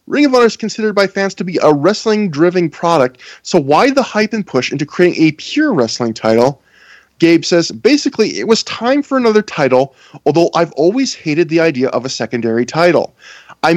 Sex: male